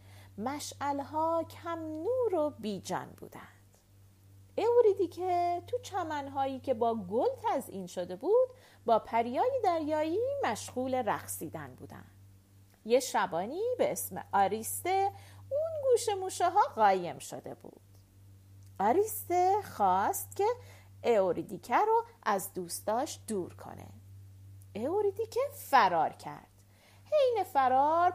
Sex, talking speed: female, 105 wpm